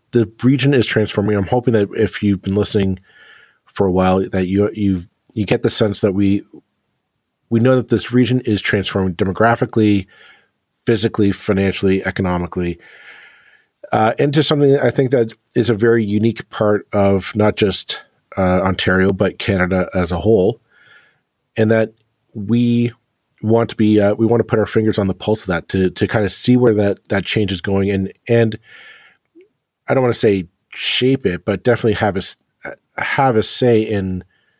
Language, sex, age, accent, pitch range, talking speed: English, male, 40-59, American, 95-120 Hz, 175 wpm